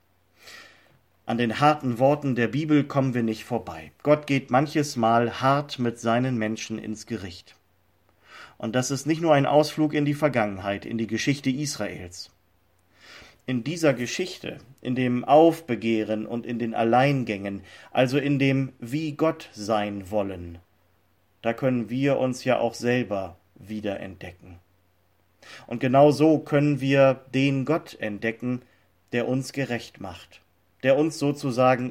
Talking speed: 140 wpm